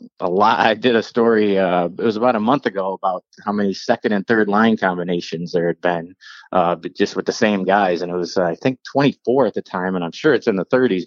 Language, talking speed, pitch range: English, 260 wpm, 95-120 Hz